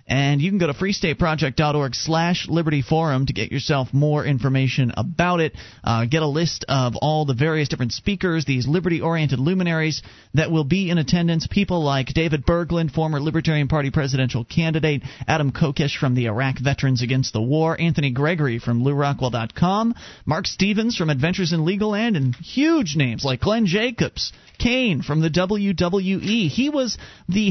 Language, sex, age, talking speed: English, male, 30-49, 165 wpm